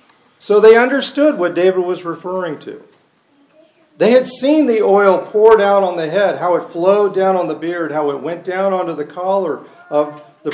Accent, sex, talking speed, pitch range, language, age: American, male, 195 wpm, 145-215 Hz, English, 50-69